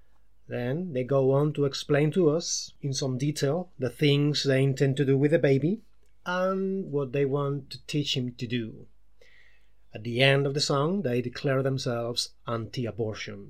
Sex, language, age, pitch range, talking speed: male, English, 30-49, 120-150 Hz, 175 wpm